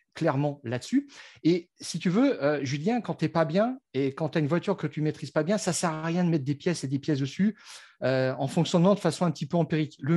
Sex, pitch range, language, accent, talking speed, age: male, 140-185 Hz, French, French, 285 wpm, 50-69